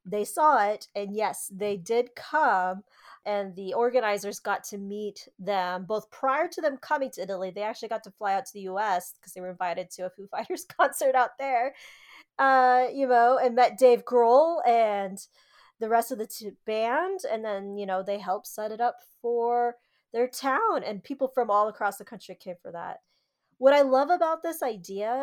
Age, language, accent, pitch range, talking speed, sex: 20-39, English, American, 205-270 Hz, 195 wpm, female